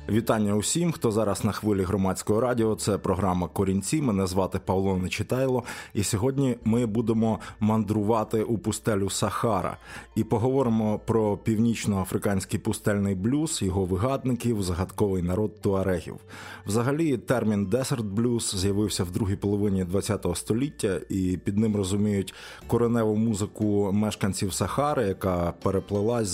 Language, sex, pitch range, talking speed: Ukrainian, male, 100-120 Hz, 120 wpm